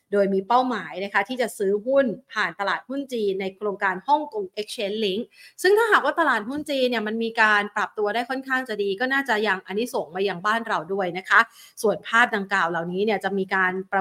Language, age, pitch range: Thai, 30-49, 200-270 Hz